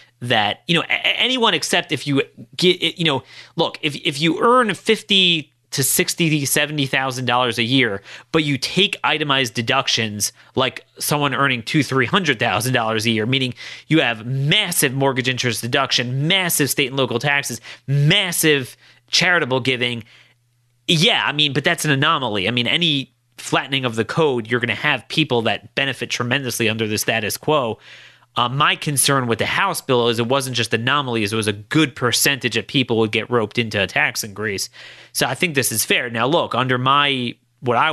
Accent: American